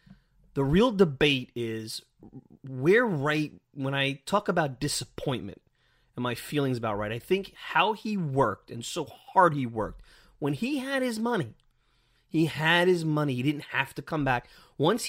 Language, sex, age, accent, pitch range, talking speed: English, male, 30-49, American, 120-165 Hz, 165 wpm